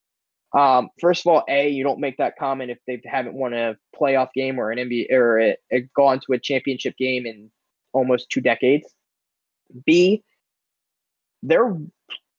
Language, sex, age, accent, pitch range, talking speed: English, male, 20-39, American, 135-180 Hz, 165 wpm